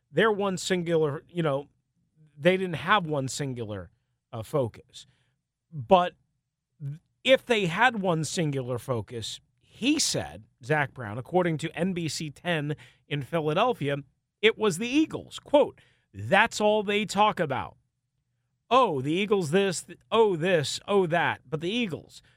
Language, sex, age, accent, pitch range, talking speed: English, male, 40-59, American, 130-175 Hz, 130 wpm